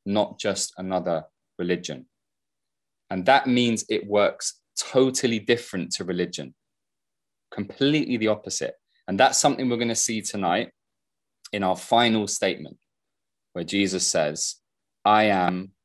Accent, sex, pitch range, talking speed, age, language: British, male, 95-120 Hz, 125 wpm, 20-39, English